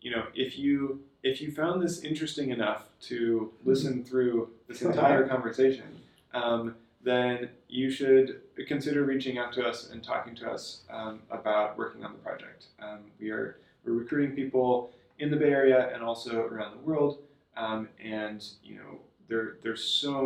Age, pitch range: 20-39, 110-130 Hz